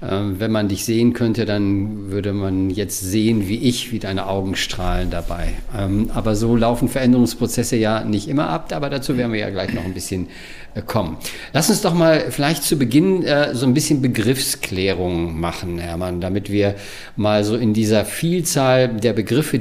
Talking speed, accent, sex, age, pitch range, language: 175 wpm, German, male, 50-69, 95-125 Hz, German